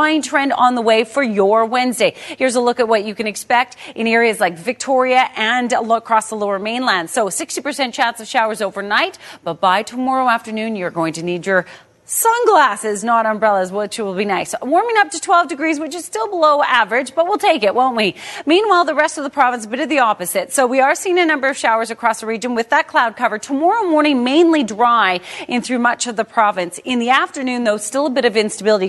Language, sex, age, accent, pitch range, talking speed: English, female, 30-49, American, 220-300 Hz, 220 wpm